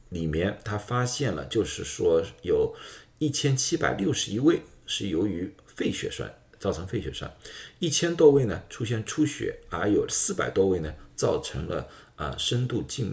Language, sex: Chinese, male